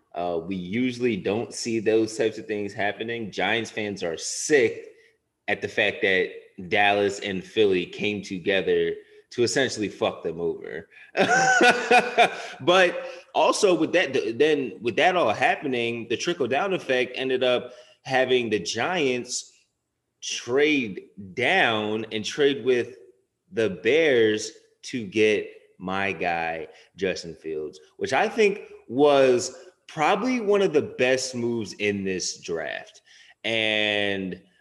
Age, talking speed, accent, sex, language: 30-49, 125 wpm, American, male, English